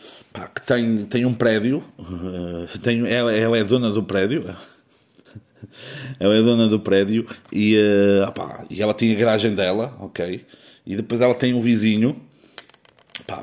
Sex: male